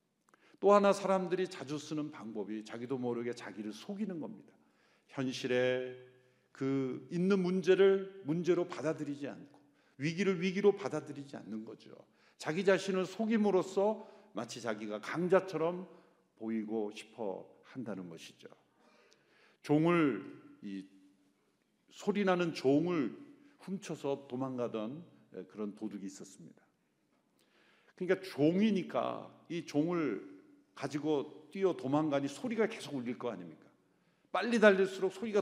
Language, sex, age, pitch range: Korean, male, 50-69, 125-190 Hz